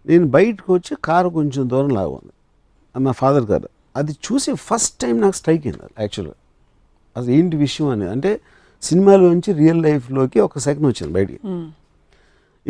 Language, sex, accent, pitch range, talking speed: Telugu, male, native, 120-165 Hz, 150 wpm